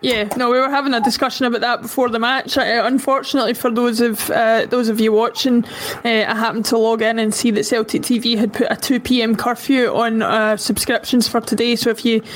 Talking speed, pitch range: 225 wpm, 230-260 Hz